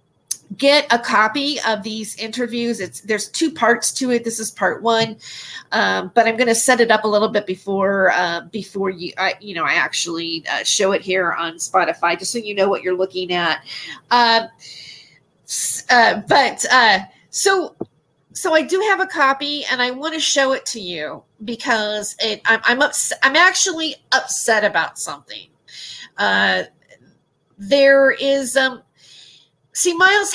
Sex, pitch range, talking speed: female, 190-250 Hz, 165 wpm